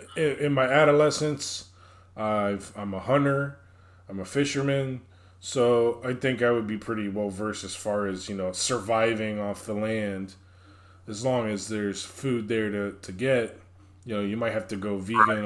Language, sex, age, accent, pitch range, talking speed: English, male, 20-39, American, 95-125 Hz, 180 wpm